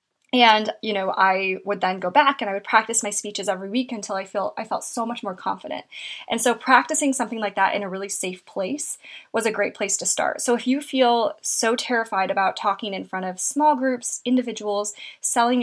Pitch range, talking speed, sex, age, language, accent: 205-260 Hz, 215 wpm, female, 10-29, English, American